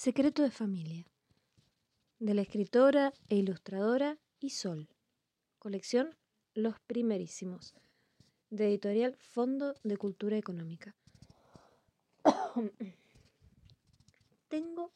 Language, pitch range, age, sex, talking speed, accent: Spanish, 180-250 Hz, 20-39, female, 75 wpm, Argentinian